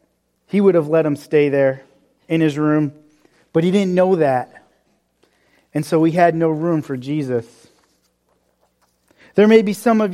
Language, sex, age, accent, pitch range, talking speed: English, male, 40-59, American, 160-200 Hz, 165 wpm